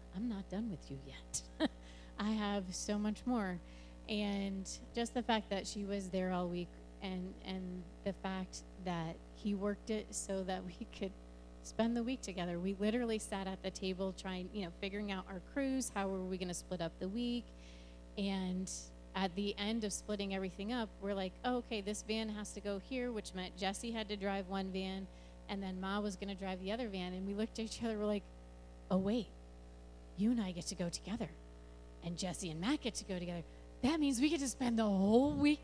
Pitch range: 180-240 Hz